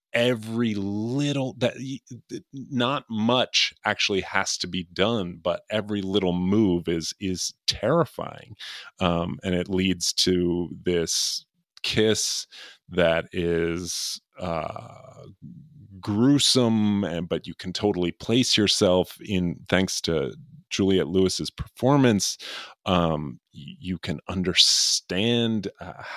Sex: male